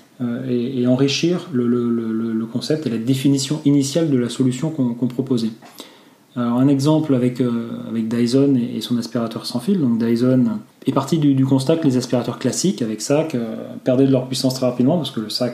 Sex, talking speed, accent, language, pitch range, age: male, 205 wpm, French, French, 120-140 Hz, 30-49